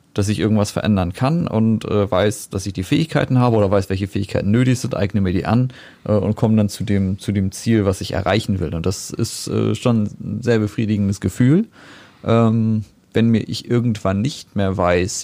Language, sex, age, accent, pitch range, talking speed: German, male, 30-49, German, 95-110 Hz, 210 wpm